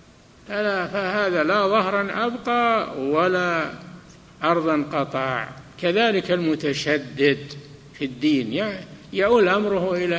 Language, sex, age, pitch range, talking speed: Arabic, male, 60-79, 145-200 Hz, 90 wpm